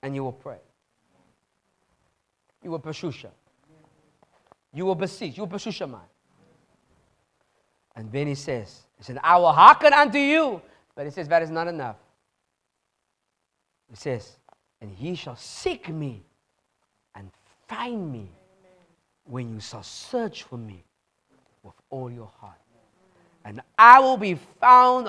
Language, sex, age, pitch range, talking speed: English, male, 40-59, 130-210 Hz, 135 wpm